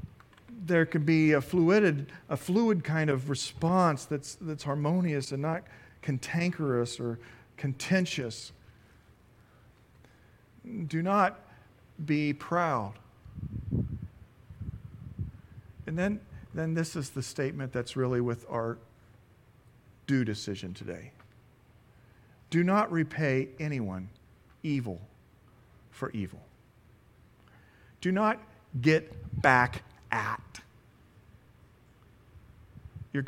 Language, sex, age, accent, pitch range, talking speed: English, male, 50-69, American, 115-160 Hz, 90 wpm